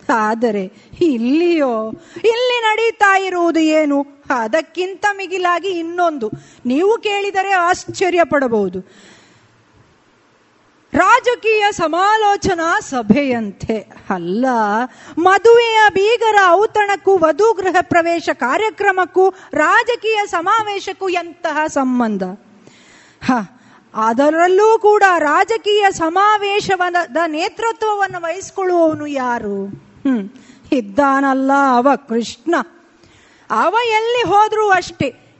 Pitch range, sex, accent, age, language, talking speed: 255-390 Hz, female, native, 30-49, Kannada, 75 wpm